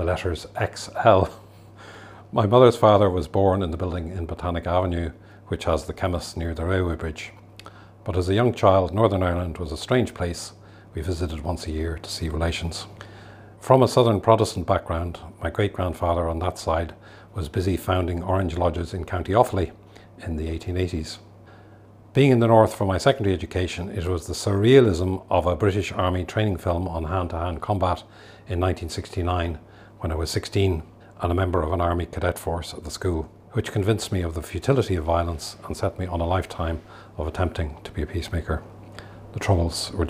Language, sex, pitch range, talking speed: English, male, 85-105 Hz, 185 wpm